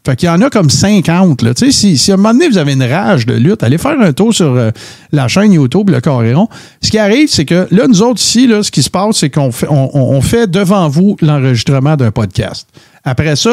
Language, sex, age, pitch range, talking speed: French, male, 50-69, 130-185 Hz, 260 wpm